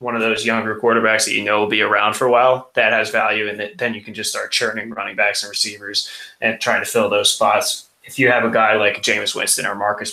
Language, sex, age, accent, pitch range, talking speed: English, male, 20-39, American, 110-125 Hz, 260 wpm